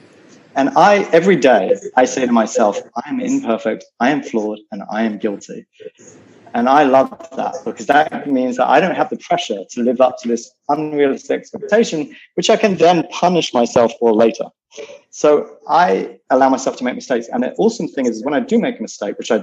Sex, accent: male, British